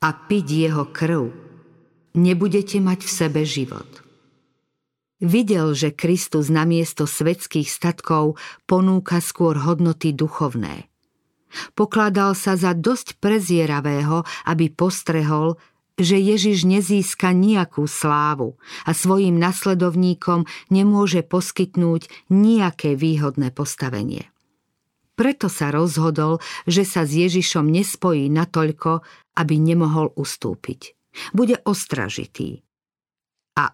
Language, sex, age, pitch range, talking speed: Slovak, female, 50-69, 155-190 Hz, 95 wpm